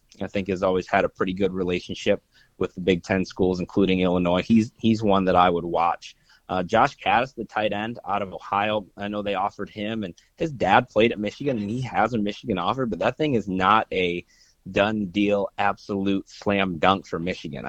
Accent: American